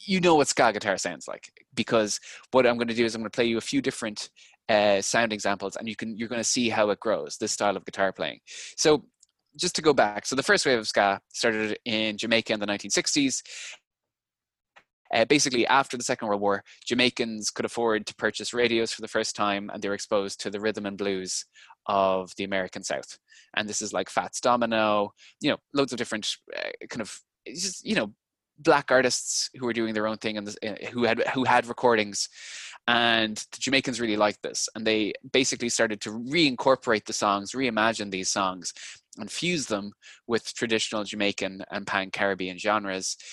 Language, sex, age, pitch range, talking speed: English, male, 20-39, 100-125 Hz, 200 wpm